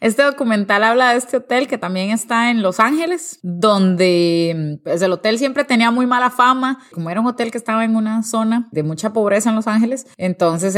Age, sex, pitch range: 30-49, female, 175-225 Hz